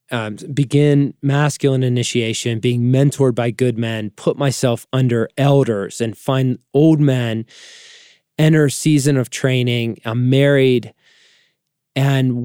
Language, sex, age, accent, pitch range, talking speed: English, male, 20-39, American, 120-150 Hz, 115 wpm